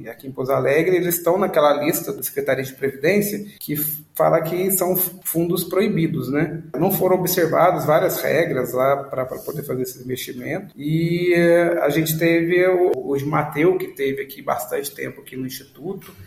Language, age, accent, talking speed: Portuguese, 40-59, Brazilian, 170 wpm